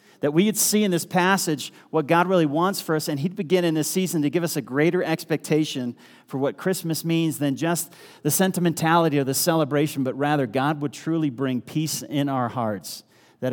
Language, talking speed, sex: English, 210 wpm, male